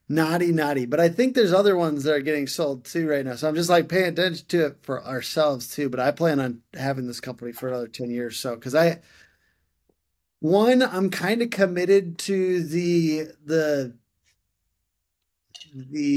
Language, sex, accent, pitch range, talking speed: English, male, American, 135-170 Hz, 180 wpm